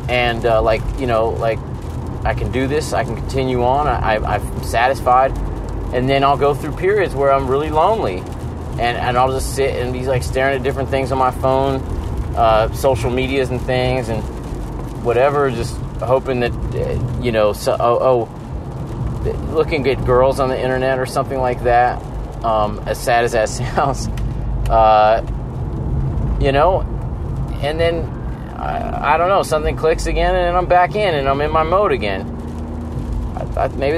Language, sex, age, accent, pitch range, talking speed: English, male, 30-49, American, 115-135 Hz, 170 wpm